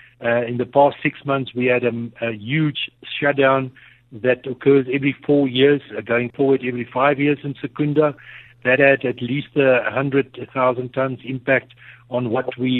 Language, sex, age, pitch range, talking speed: English, male, 60-79, 125-145 Hz, 170 wpm